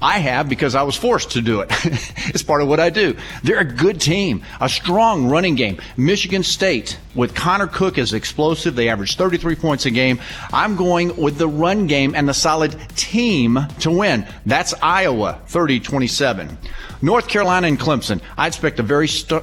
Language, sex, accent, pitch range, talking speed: English, male, American, 120-170 Hz, 185 wpm